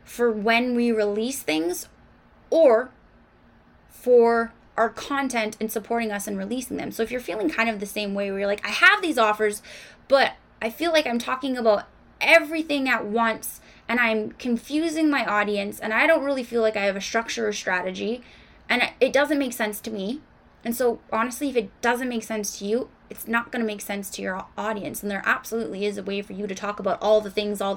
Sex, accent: female, American